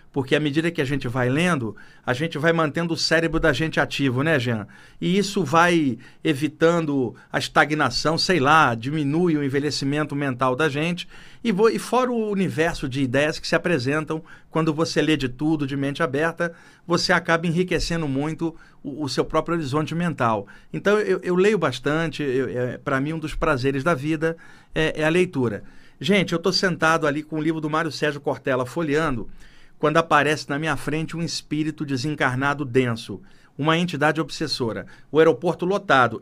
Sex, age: male, 50-69